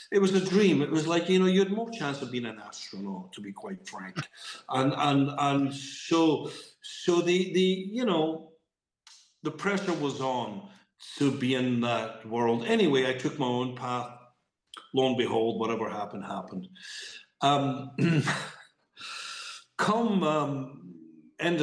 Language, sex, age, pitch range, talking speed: English, male, 60-79, 120-160 Hz, 155 wpm